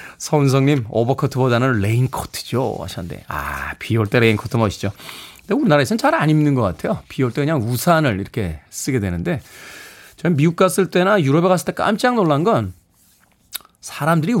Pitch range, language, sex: 115-175 Hz, Korean, male